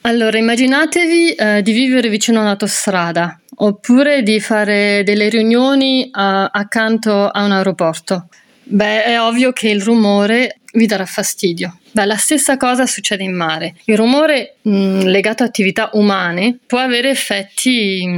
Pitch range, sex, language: 195-230 Hz, female, Italian